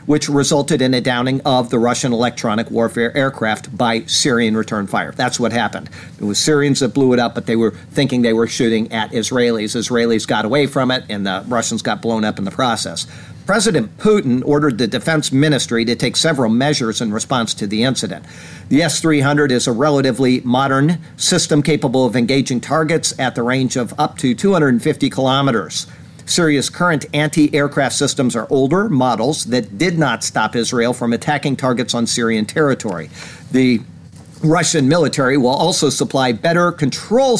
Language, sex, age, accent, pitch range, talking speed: English, male, 50-69, American, 120-150 Hz, 175 wpm